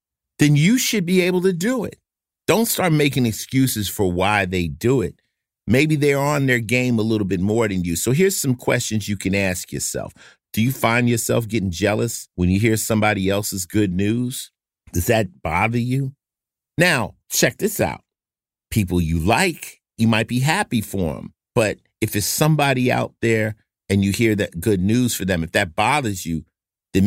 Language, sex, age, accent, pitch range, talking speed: English, male, 50-69, American, 85-115 Hz, 190 wpm